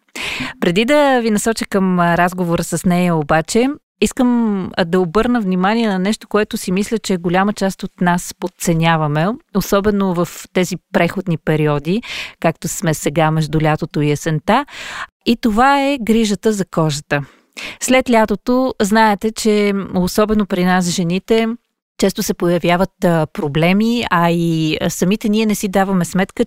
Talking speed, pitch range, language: 145 wpm, 175-225 Hz, Bulgarian